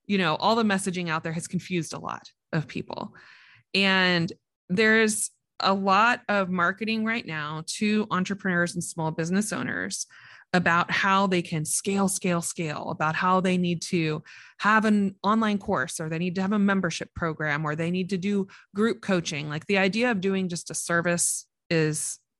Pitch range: 170-210 Hz